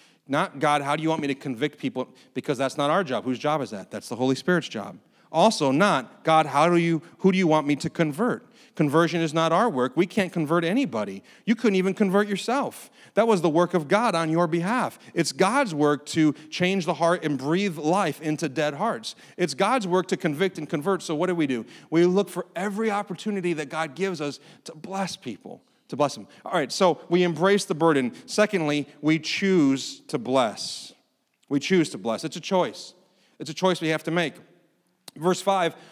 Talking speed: 215 wpm